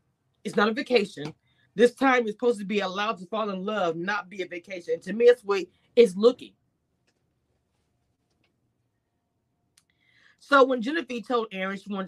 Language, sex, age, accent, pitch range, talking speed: English, female, 30-49, American, 205-335 Hz, 165 wpm